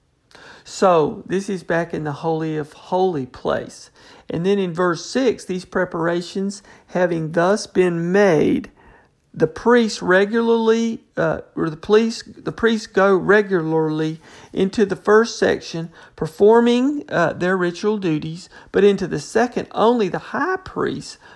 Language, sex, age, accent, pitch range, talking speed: English, male, 50-69, American, 155-195 Hz, 140 wpm